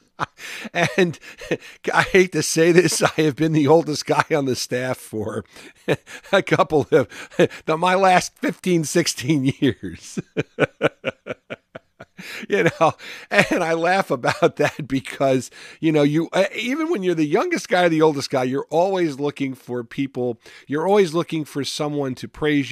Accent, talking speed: American, 150 wpm